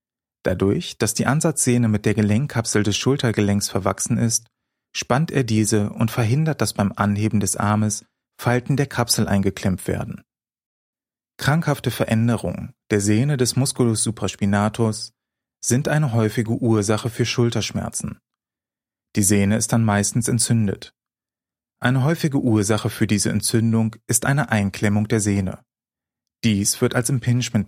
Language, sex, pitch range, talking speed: German, male, 105-125 Hz, 130 wpm